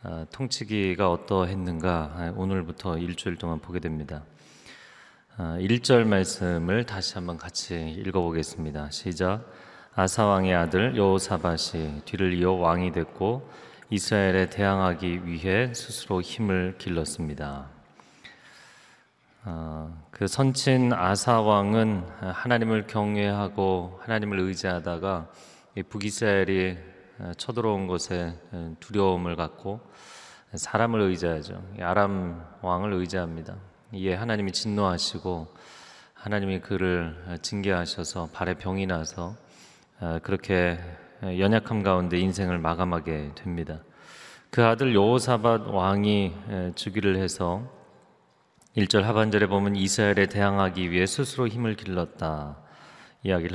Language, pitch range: Korean, 85-105 Hz